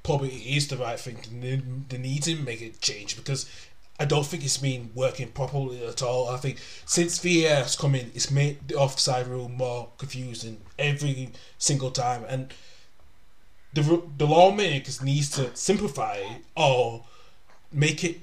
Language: English